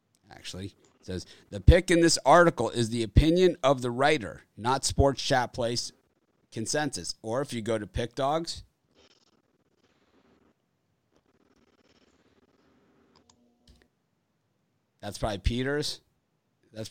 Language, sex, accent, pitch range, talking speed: English, male, American, 105-140 Hz, 105 wpm